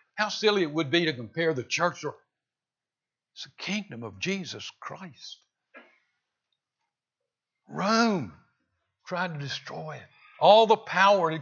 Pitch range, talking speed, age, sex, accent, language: 150-210 Hz, 125 wpm, 60-79, male, American, English